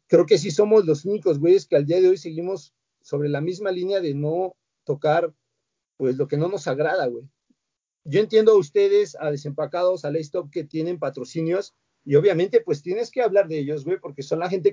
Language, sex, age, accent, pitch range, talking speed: Spanish, male, 40-59, Mexican, 150-195 Hz, 210 wpm